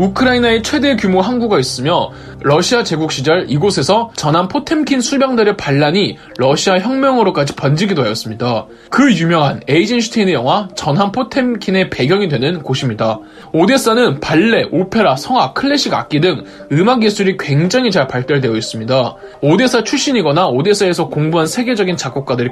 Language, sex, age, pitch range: Korean, male, 20-39, 140-235 Hz